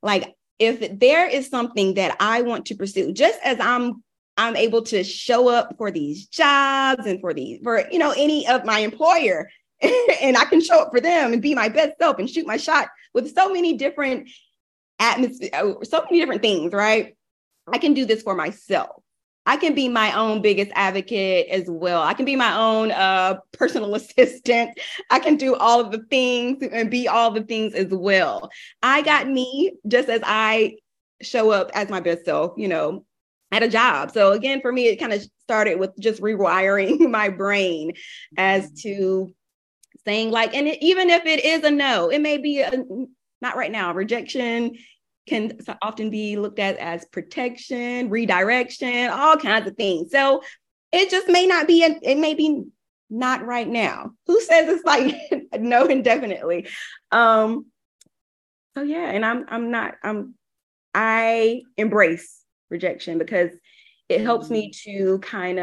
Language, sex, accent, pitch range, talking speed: English, female, American, 205-275 Hz, 175 wpm